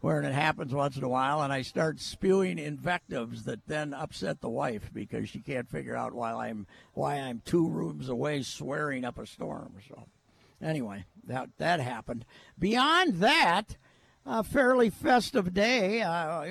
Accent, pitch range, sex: American, 135-190 Hz, male